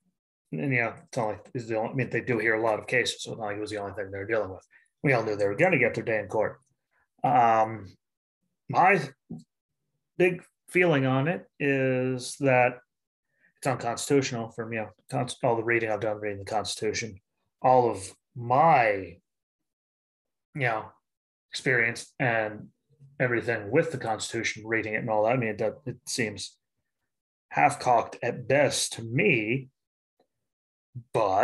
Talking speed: 180 wpm